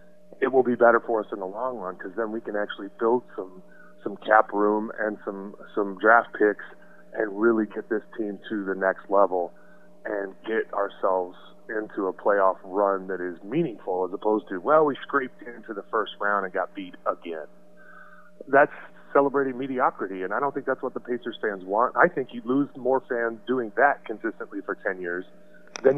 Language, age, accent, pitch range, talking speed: English, 30-49, American, 90-120 Hz, 195 wpm